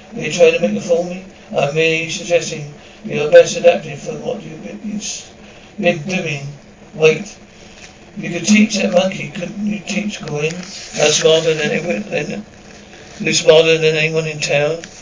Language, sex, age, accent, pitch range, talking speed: English, male, 60-79, British, 160-195 Hz, 155 wpm